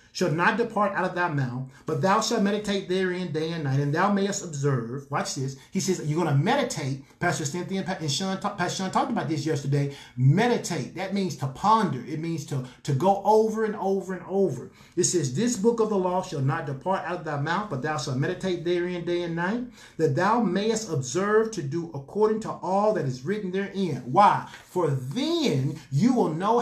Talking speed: 220 wpm